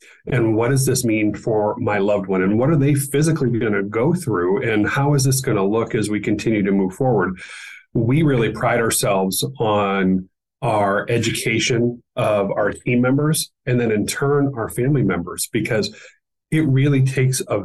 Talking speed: 185 wpm